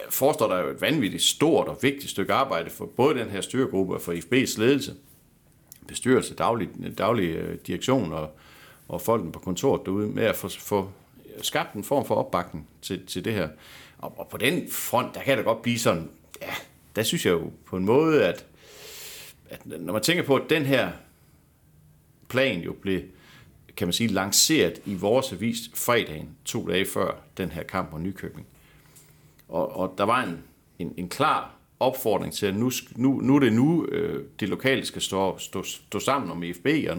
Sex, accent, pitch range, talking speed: male, native, 90-130 Hz, 190 wpm